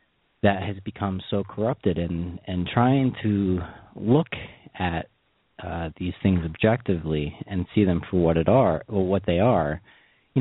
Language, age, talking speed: English, 30-49, 155 wpm